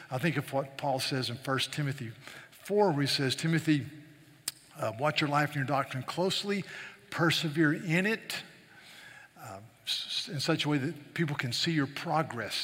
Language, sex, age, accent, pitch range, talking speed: English, male, 50-69, American, 130-155 Hz, 170 wpm